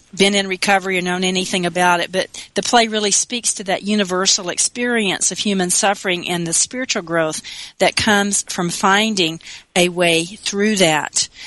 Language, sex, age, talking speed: English, female, 40-59, 175 wpm